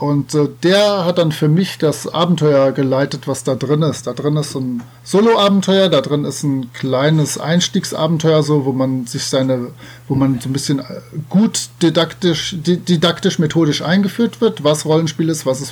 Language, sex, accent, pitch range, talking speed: German, male, German, 140-175 Hz, 170 wpm